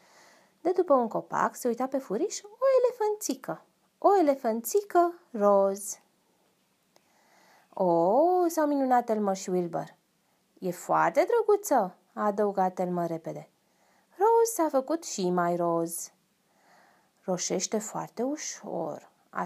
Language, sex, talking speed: Romanian, female, 115 wpm